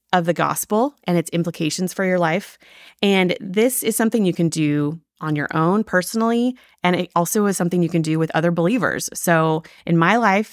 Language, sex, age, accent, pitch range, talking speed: English, female, 30-49, American, 165-190 Hz, 200 wpm